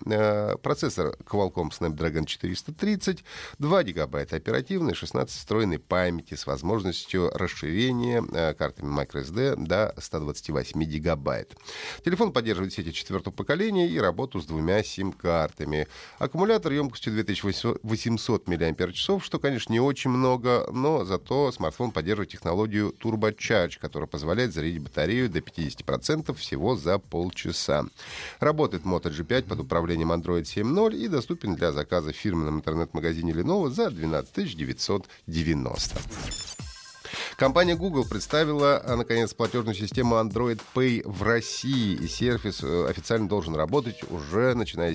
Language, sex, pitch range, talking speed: Russian, male, 85-135 Hz, 120 wpm